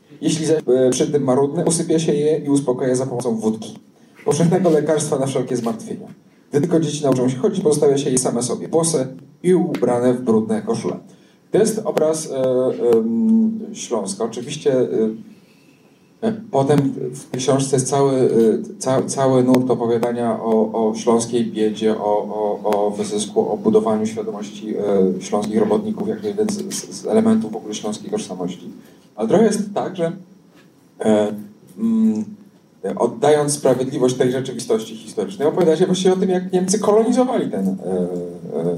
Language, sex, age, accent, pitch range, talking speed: Polish, male, 40-59, native, 120-185 Hz, 140 wpm